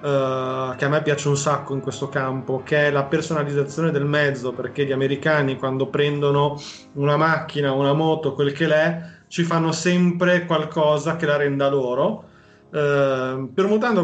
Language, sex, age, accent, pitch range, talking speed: Italian, male, 30-49, native, 140-160 Hz, 155 wpm